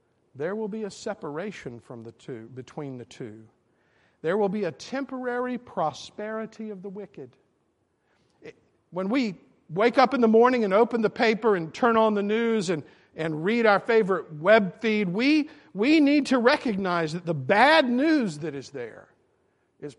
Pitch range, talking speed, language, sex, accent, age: 170-240 Hz, 170 wpm, English, male, American, 50-69